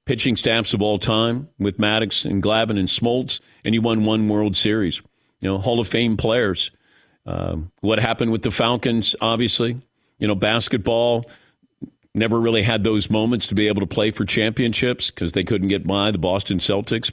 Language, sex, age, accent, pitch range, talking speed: English, male, 50-69, American, 110-150 Hz, 185 wpm